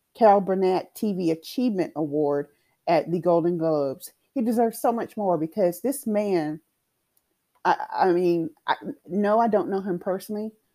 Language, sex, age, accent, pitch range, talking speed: English, female, 30-49, American, 165-205 Hz, 150 wpm